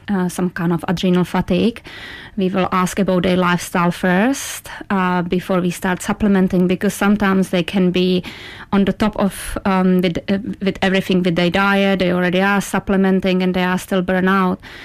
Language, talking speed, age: English, 180 wpm, 30-49